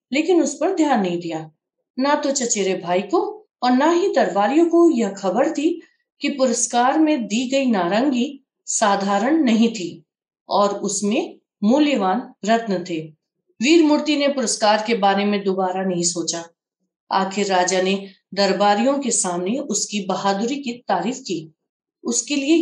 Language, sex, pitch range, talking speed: Hindi, female, 195-270 Hz, 145 wpm